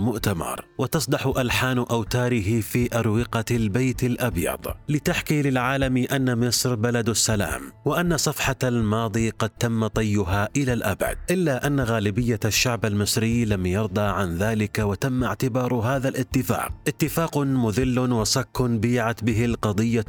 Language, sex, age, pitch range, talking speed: Arabic, male, 30-49, 105-130 Hz, 120 wpm